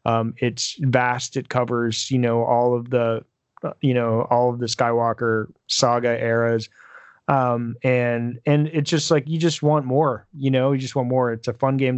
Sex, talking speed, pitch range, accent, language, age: male, 190 wpm, 120-150 Hz, American, English, 20-39